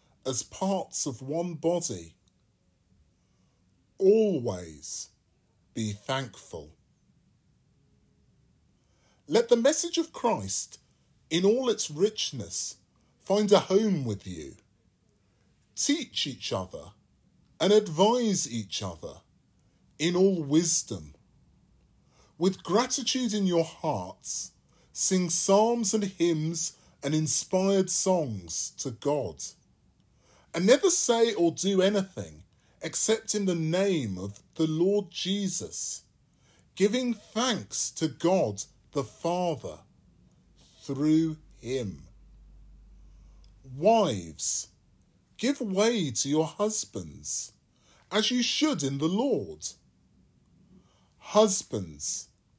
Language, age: English, 30-49